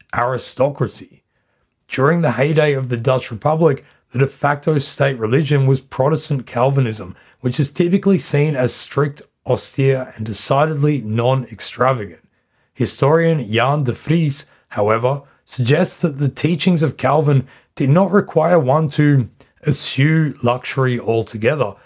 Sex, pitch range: male, 125-155 Hz